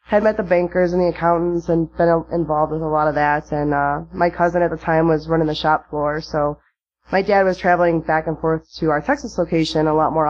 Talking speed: 250 wpm